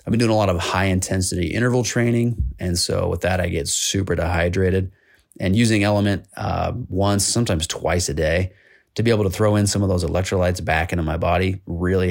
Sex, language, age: male, English, 30-49